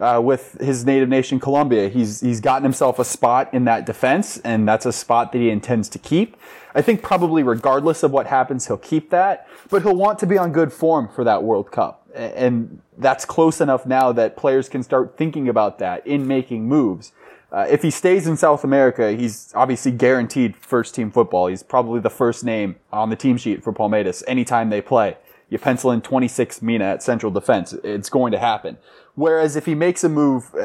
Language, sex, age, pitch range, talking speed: English, male, 20-39, 115-150 Hz, 210 wpm